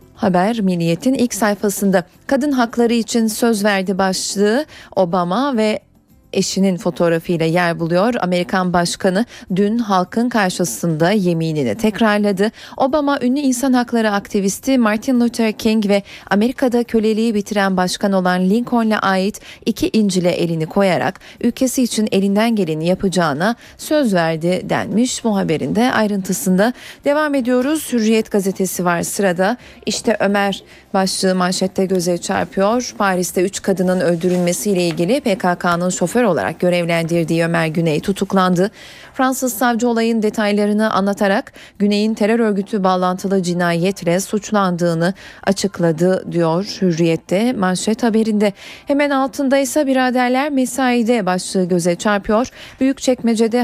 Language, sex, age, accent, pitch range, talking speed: Turkish, female, 40-59, native, 180-230 Hz, 115 wpm